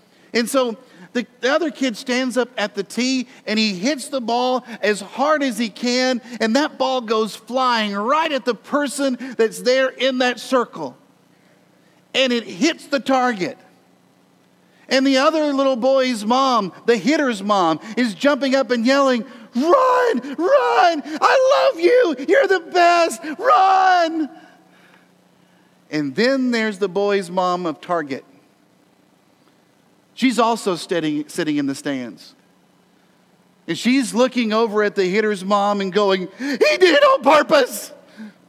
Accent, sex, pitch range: American, male, 180-275 Hz